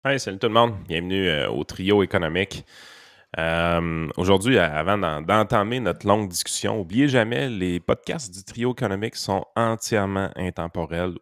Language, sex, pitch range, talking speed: French, male, 85-100 Hz, 140 wpm